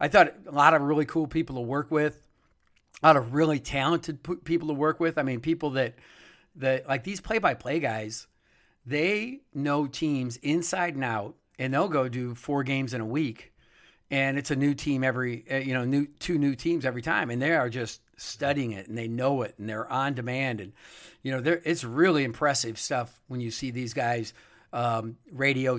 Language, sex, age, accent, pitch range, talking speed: English, male, 50-69, American, 125-150 Hz, 200 wpm